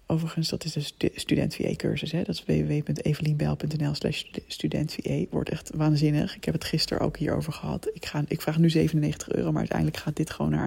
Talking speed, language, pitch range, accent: 195 wpm, Dutch, 130-180 Hz, Dutch